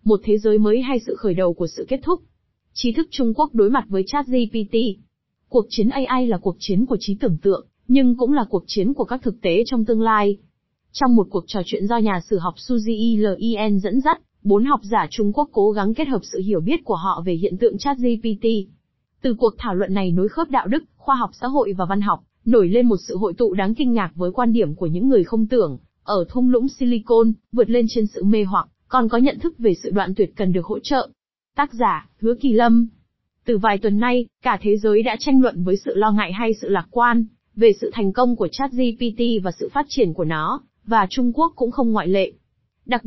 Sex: female